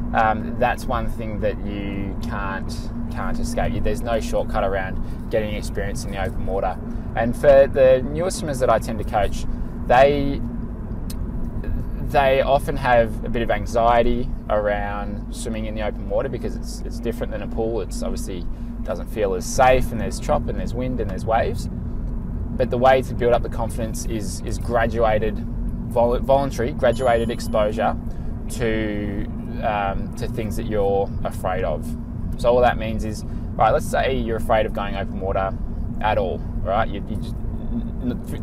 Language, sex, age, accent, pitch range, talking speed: English, male, 20-39, Australian, 105-115 Hz, 170 wpm